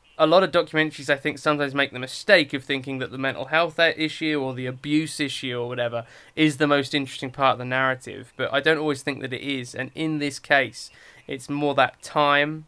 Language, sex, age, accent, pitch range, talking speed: English, male, 20-39, British, 125-145 Hz, 220 wpm